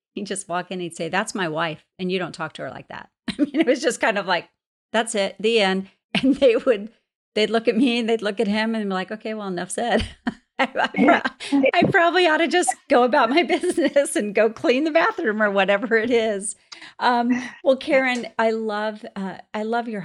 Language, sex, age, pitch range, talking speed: English, female, 40-59, 185-230 Hz, 230 wpm